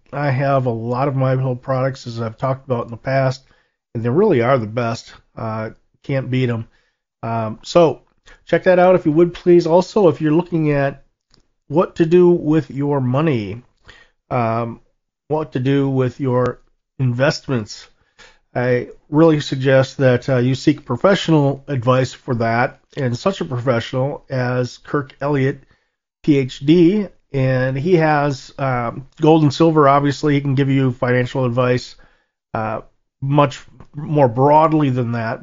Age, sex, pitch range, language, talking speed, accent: 40-59, male, 125-145 Hz, English, 155 wpm, American